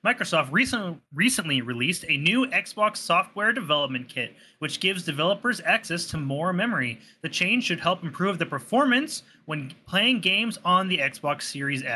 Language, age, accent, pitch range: English, 30-49, American, 140-190 Hz